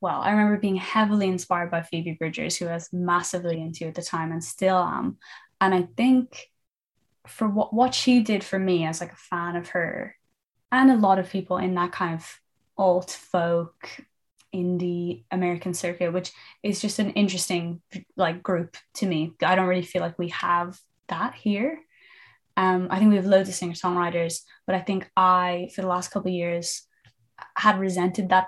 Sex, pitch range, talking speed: female, 175-190 Hz, 190 wpm